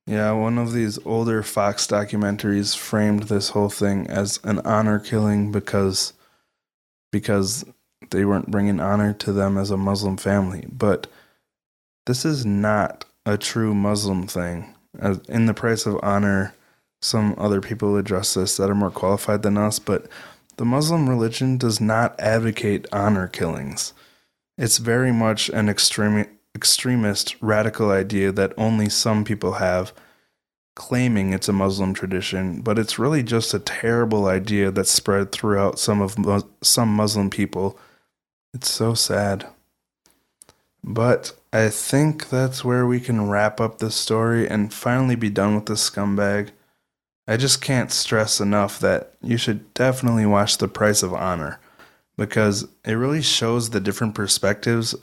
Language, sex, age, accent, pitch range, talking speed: English, male, 20-39, American, 100-115 Hz, 150 wpm